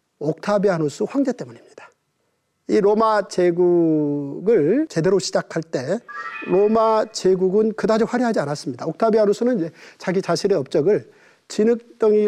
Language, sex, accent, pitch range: Korean, male, native, 170-260 Hz